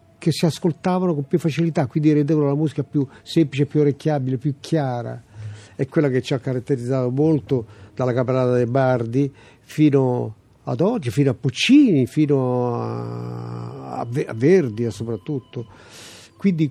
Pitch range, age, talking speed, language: 125-170 Hz, 50-69, 145 wpm, Italian